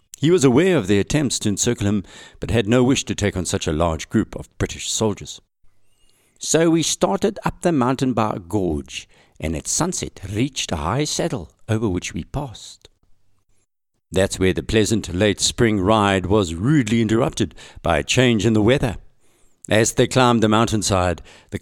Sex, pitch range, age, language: male, 90-120 Hz, 60-79, English